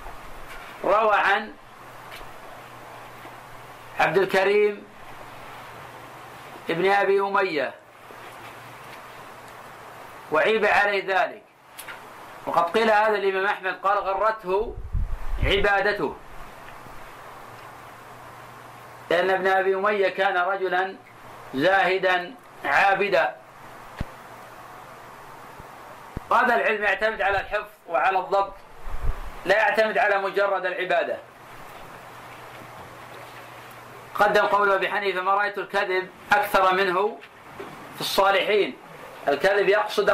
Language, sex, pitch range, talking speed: Arabic, male, 185-205 Hz, 75 wpm